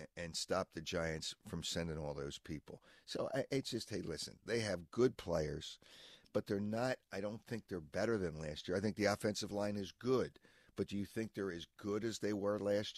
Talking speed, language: 220 wpm, English